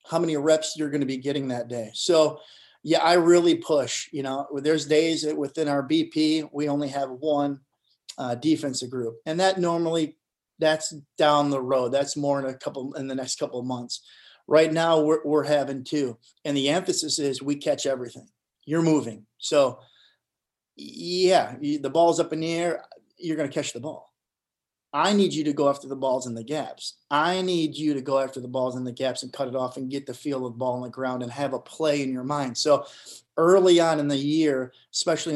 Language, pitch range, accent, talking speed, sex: English, 135-160 Hz, American, 215 wpm, male